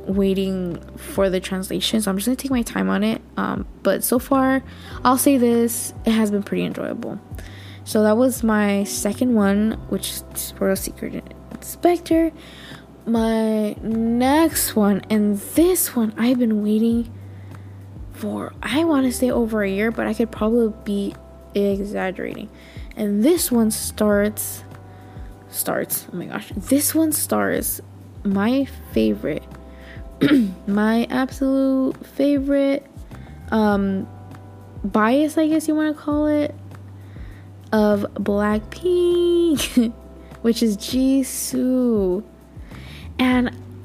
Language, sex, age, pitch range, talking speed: English, female, 10-29, 190-255 Hz, 125 wpm